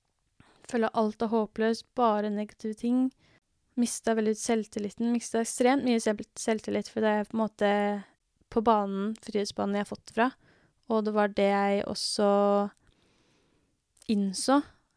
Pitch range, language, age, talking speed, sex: 210-235 Hz, English, 20-39, 130 wpm, female